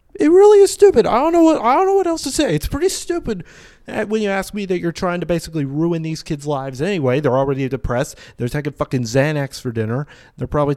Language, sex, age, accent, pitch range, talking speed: English, male, 30-49, American, 125-160 Hz, 240 wpm